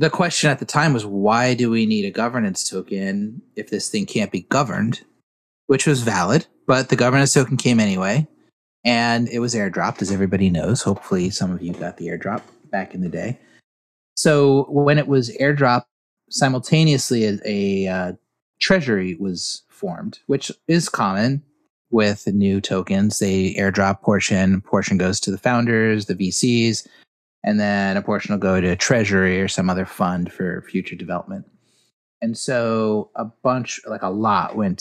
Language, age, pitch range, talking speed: English, 30-49, 100-135 Hz, 170 wpm